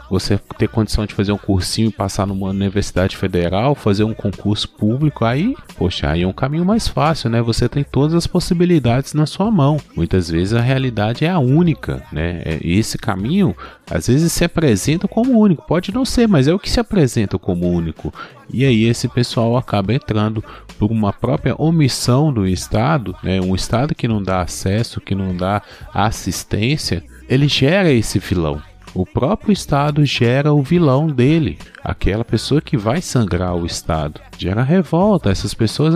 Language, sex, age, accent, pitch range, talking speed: Portuguese, male, 30-49, Brazilian, 100-145 Hz, 175 wpm